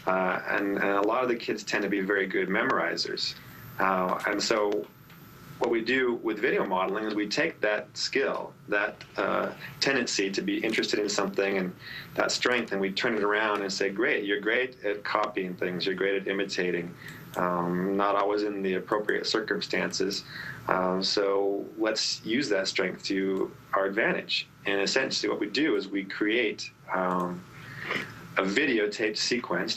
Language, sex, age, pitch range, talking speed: English, male, 30-49, 95-100 Hz, 165 wpm